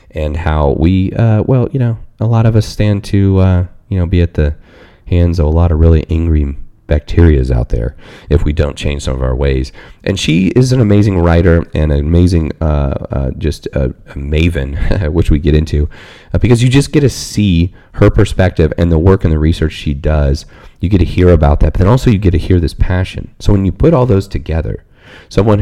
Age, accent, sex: 30-49, American, male